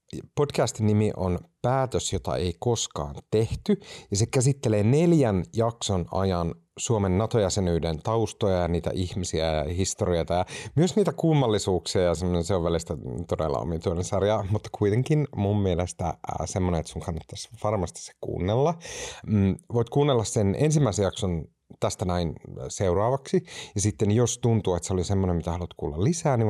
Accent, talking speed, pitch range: native, 145 wpm, 90-115 Hz